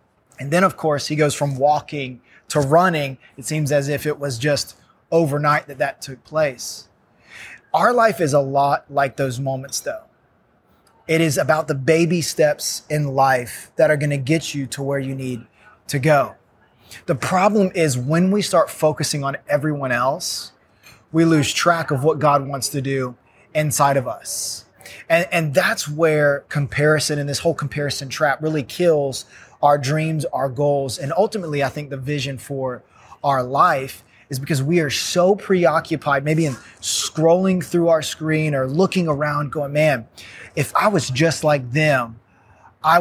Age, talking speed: 20-39, 170 wpm